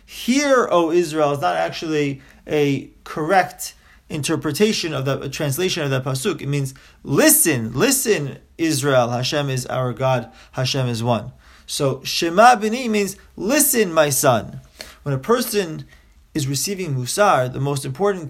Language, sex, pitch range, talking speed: English, male, 130-190 Hz, 140 wpm